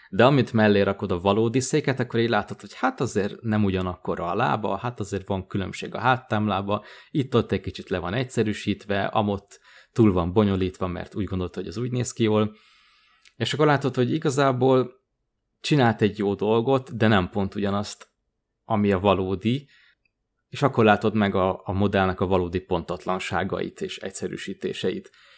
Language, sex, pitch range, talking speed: Hungarian, male, 95-110 Hz, 170 wpm